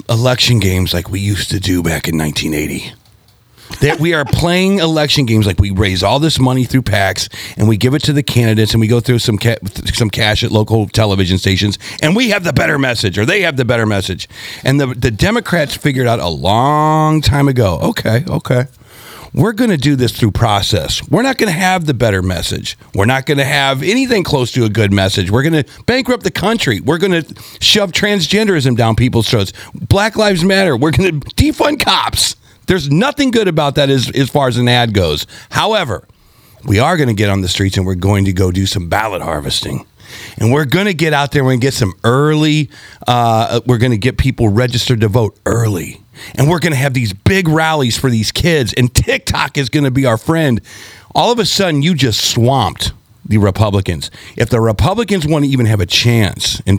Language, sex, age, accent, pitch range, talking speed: English, male, 40-59, American, 105-150 Hz, 215 wpm